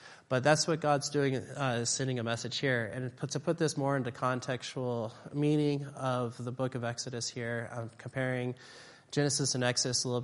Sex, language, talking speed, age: male, English, 190 wpm, 30-49